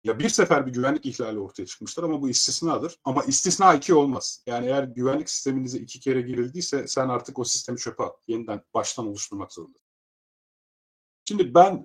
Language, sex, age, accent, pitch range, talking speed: Turkish, male, 40-59, native, 125-165 Hz, 170 wpm